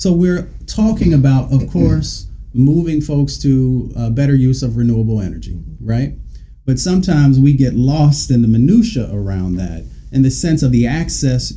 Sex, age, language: male, 40-59, English